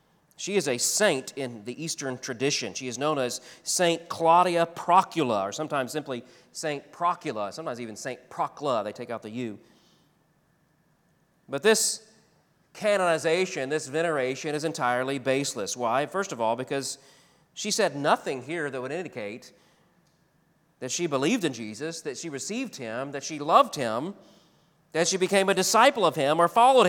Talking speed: 160 wpm